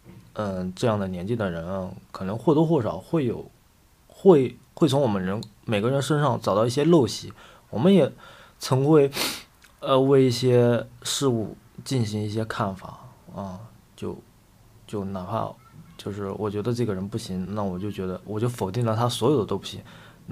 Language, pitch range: Chinese, 100-125 Hz